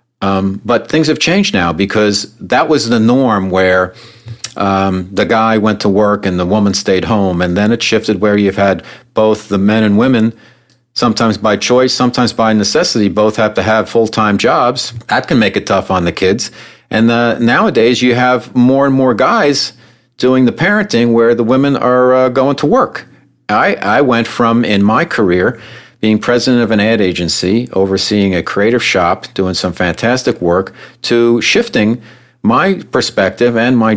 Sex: male